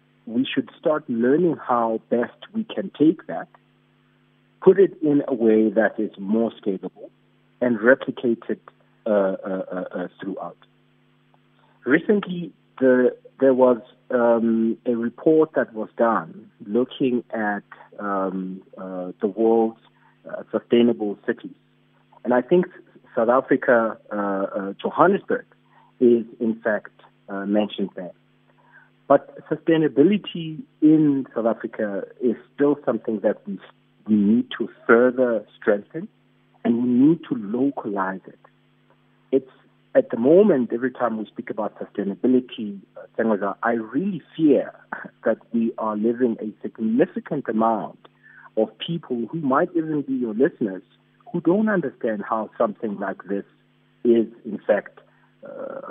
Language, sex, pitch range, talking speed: English, male, 110-145 Hz, 125 wpm